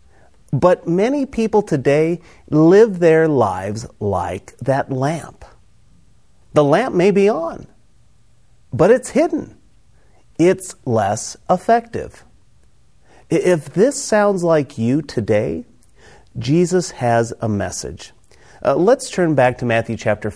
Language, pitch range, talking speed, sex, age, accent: English, 110-170 Hz, 110 wpm, male, 40-59, American